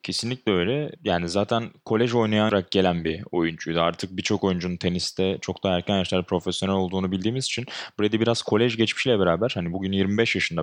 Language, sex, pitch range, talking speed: Turkish, male, 90-110 Hz, 170 wpm